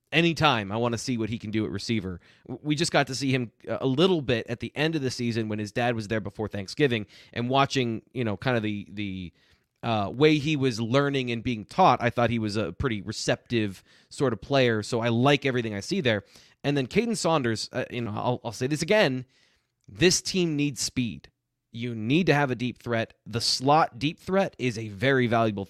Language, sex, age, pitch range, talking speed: English, male, 20-39, 110-140 Hz, 225 wpm